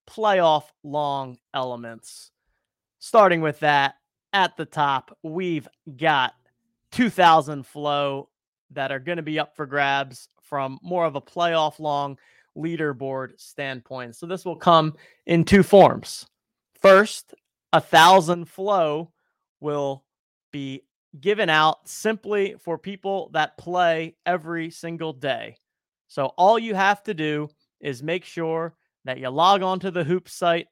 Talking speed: 130 wpm